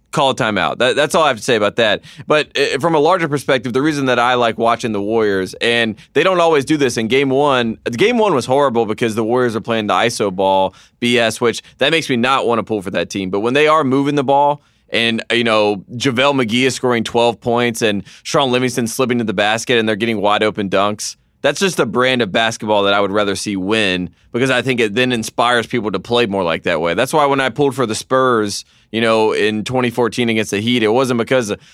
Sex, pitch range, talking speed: male, 110-130 Hz, 245 wpm